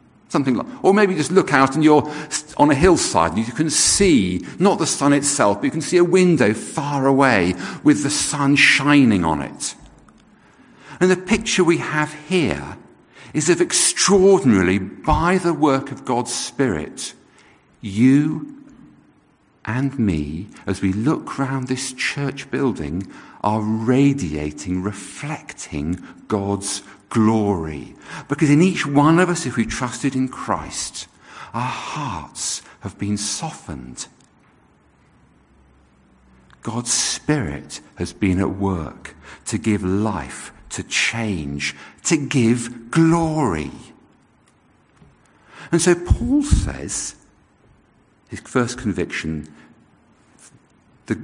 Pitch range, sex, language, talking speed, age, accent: 100-150 Hz, male, English, 120 wpm, 50-69, British